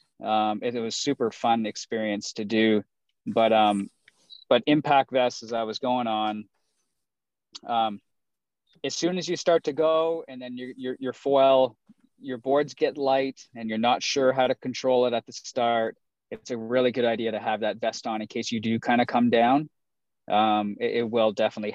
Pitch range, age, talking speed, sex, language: 110-130 Hz, 20-39, 200 wpm, male, English